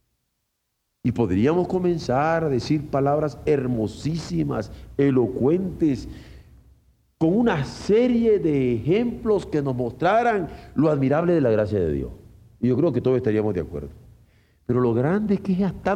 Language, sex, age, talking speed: Spanish, male, 50-69, 145 wpm